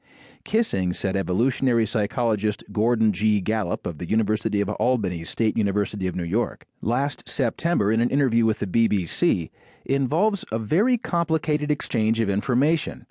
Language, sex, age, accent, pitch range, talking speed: English, male, 40-59, American, 105-145 Hz, 145 wpm